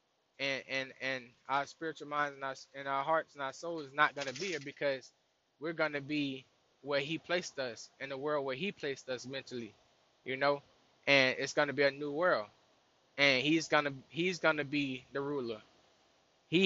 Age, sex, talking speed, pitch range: 20-39, male, 190 wpm, 135-150 Hz